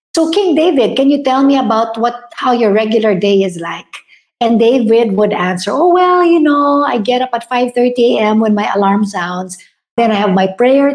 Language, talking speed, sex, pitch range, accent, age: English, 210 wpm, female, 200-265 Hz, Filipino, 50-69